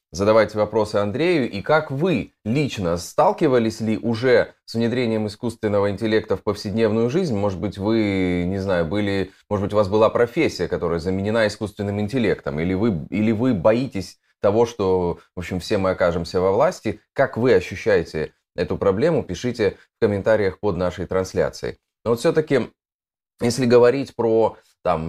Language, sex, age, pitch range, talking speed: Russian, male, 20-39, 95-120 Hz, 155 wpm